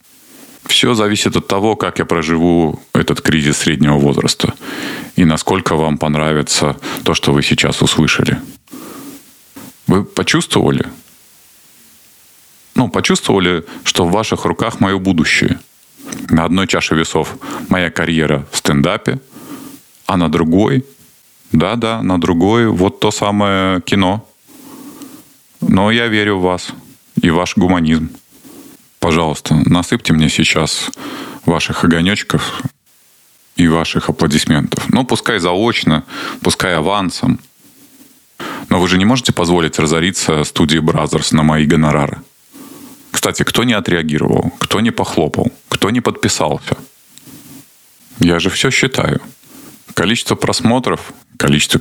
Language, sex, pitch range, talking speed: Russian, male, 80-105 Hz, 115 wpm